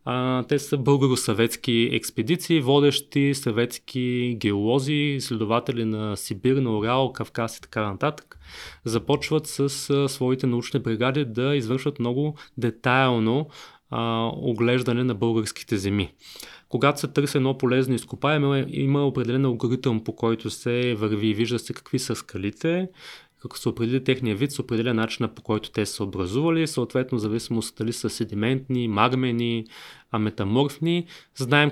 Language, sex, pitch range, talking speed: Bulgarian, male, 115-140 Hz, 145 wpm